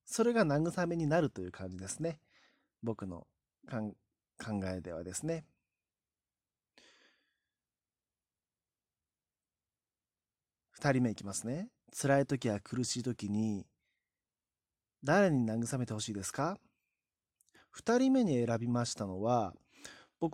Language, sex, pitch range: Japanese, male, 100-135 Hz